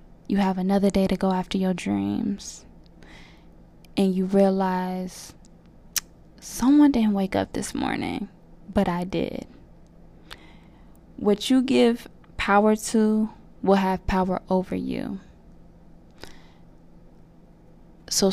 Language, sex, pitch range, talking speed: English, female, 185-210 Hz, 105 wpm